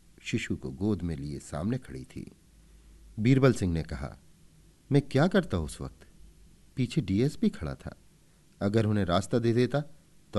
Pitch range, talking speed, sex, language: 85-120 Hz, 155 wpm, male, Hindi